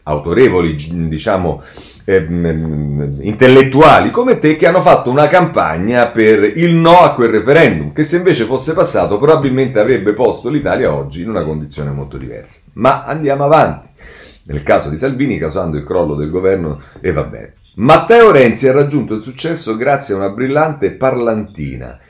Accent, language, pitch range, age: native, Italian, 95-145 Hz, 40-59